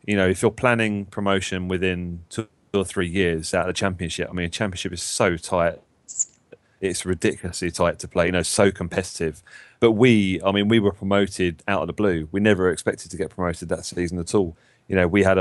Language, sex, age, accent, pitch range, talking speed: English, male, 30-49, British, 90-105 Hz, 220 wpm